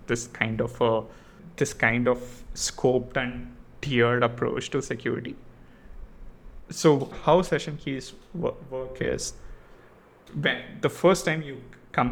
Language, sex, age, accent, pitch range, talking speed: English, male, 20-39, Indian, 120-135 Hz, 125 wpm